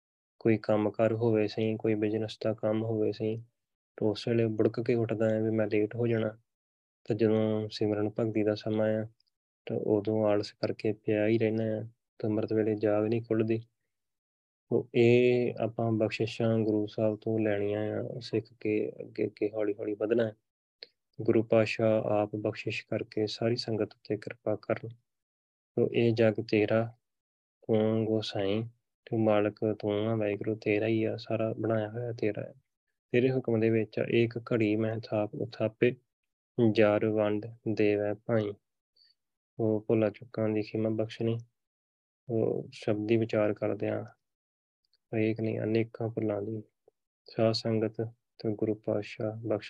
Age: 20-39